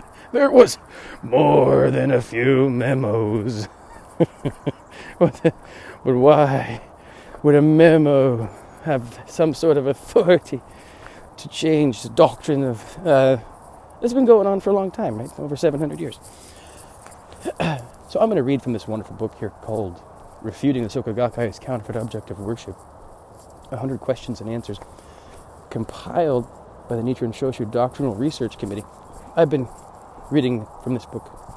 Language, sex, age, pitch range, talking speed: English, male, 30-49, 110-150 Hz, 135 wpm